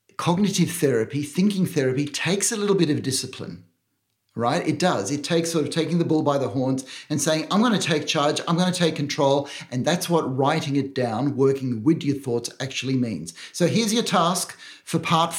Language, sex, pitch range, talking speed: English, male, 140-180 Hz, 205 wpm